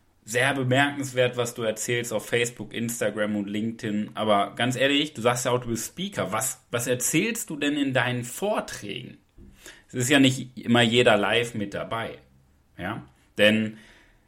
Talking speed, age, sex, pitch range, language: 160 wpm, 30-49, male, 105-135 Hz, German